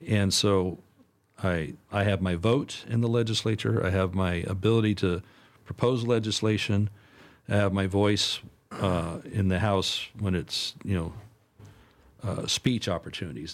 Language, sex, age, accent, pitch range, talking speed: English, male, 50-69, American, 95-115 Hz, 140 wpm